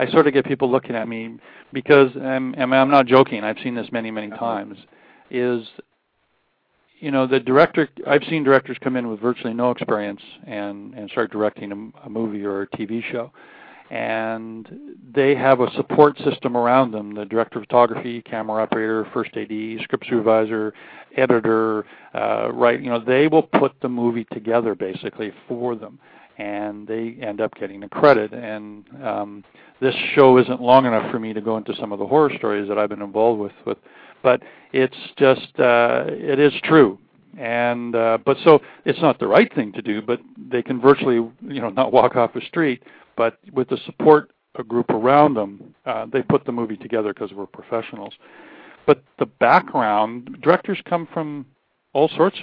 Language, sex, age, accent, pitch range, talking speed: English, male, 50-69, American, 110-135 Hz, 185 wpm